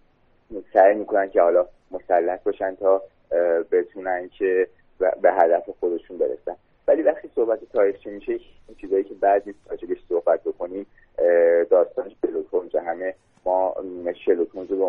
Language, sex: Persian, male